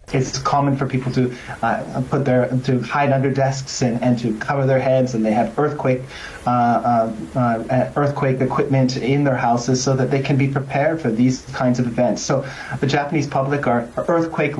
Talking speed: 190 wpm